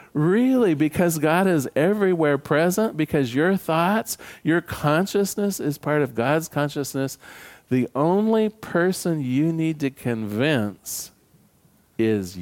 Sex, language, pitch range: male, English, 130-175 Hz